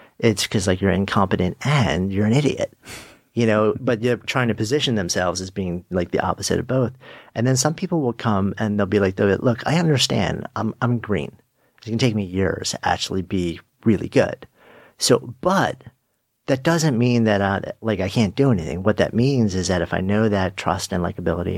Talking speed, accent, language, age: 205 wpm, American, English, 40-59